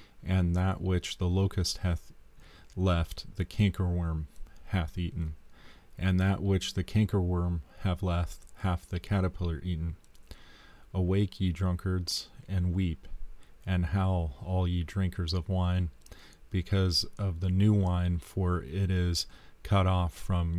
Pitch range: 85-95 Hz